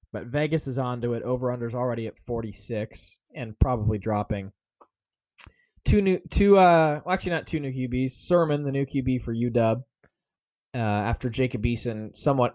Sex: male